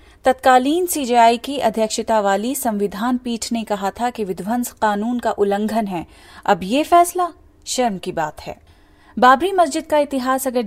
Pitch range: 205-250 Hz